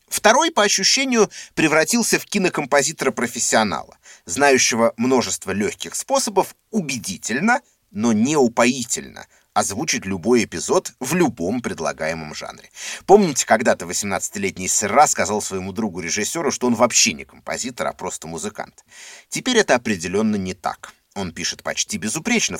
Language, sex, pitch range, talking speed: Russian, male, 115-175 Hz, 115 wpm